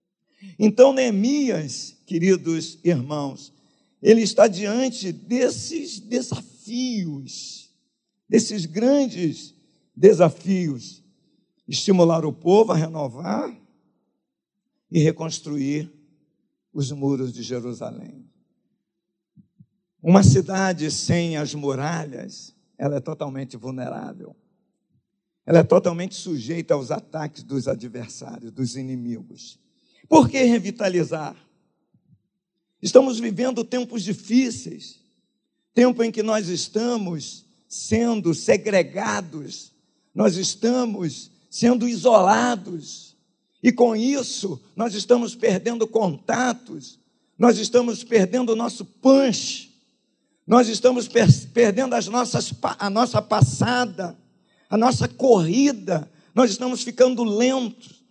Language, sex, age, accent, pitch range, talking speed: Portuguese, male, 50-69, Brazilian, 160-240 Hz, 90 wpm